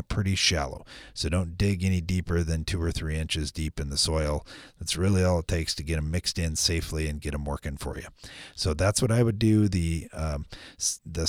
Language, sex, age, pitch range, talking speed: English, male, 30-49, 80-105 Hz, 225 wpm